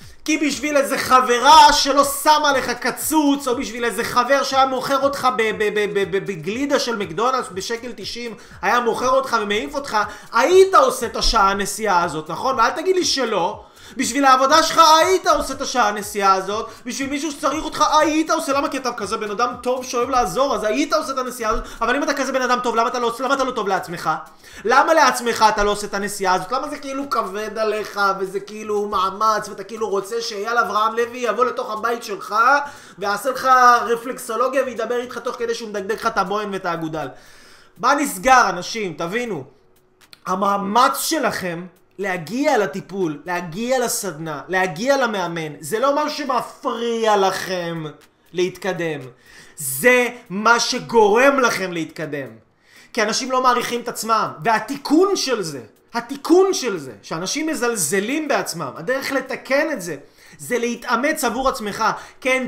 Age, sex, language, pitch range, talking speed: 30-49, male, Hebrew, 200-265 Hz, 160 wpm